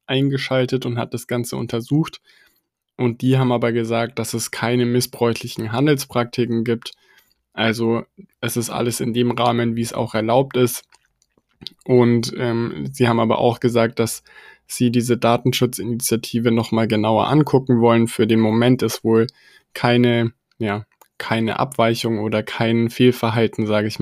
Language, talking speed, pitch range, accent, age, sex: German, 145 wpm, 115-125 Hz, German, 10-29, male